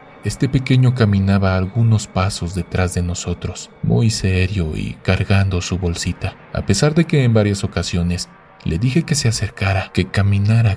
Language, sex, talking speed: Spanish, male, 155 wpm